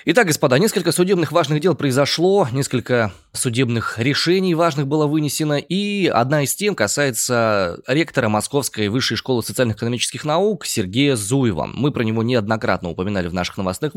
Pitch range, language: 110-155 Hz, Russian